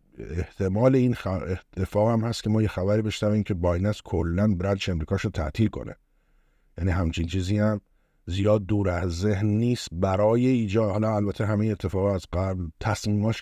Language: Persian